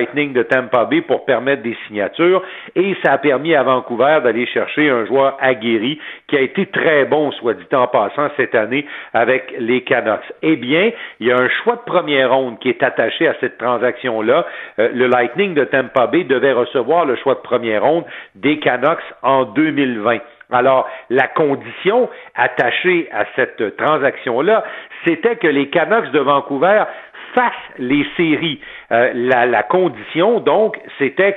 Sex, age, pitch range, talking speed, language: male, 50-69, 125-195 Hz, 170 wpm, French